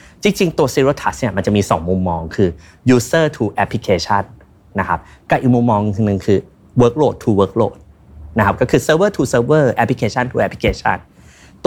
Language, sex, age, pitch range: Thai, male, 20-39, 95-125 Hz